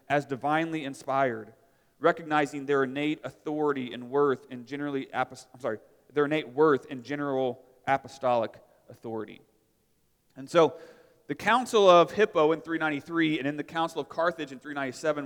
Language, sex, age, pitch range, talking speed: English, male, 30-49, 135-165 Hz, 150 wpm